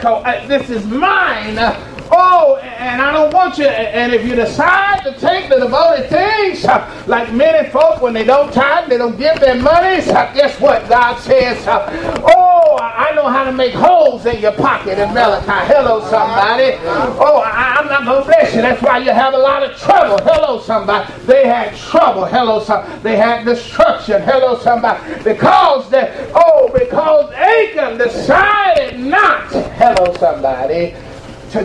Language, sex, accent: English, male, American